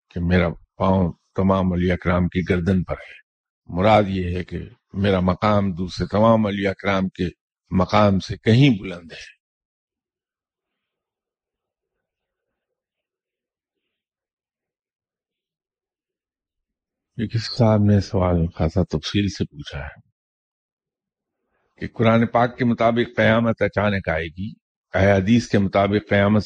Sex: male